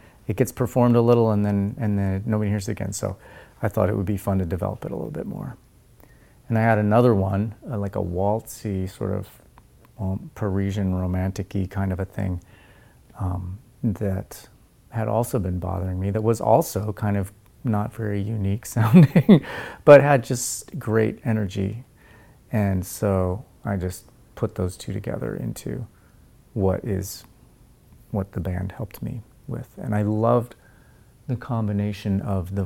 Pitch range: 95-115 Hz